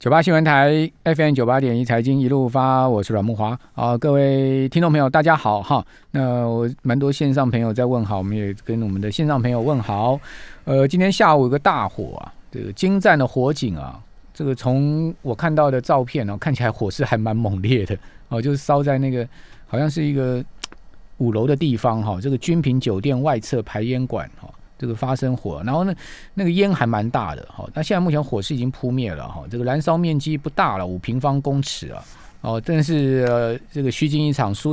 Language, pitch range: Chinese, 115-145 Hz